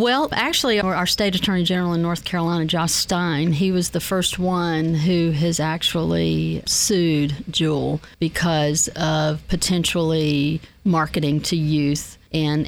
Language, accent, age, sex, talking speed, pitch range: English, American, 40-59, female, 135 wpm, 160-190 Hz